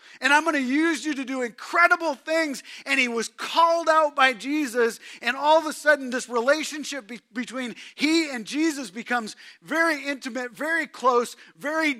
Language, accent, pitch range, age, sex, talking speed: English, American, 240-320 Hz, 40-59, male, 170 wpm